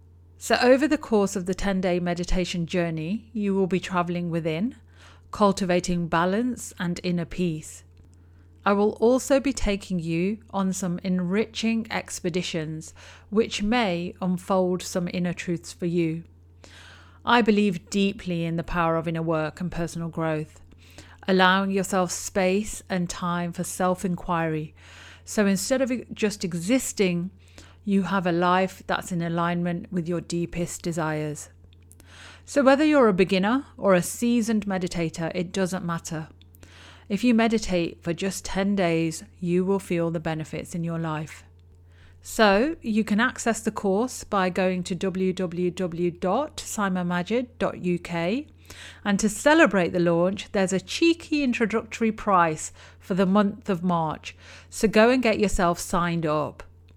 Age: 40-59